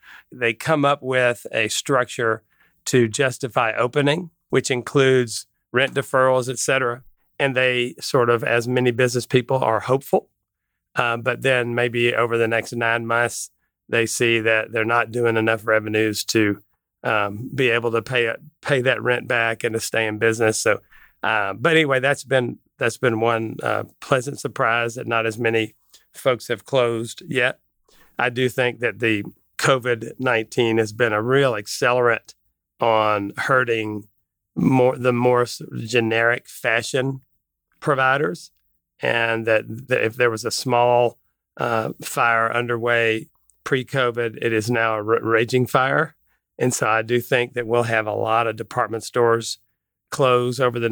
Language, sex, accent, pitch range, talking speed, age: English, male, American, 115-130 Hz, 155 wpm, 40-59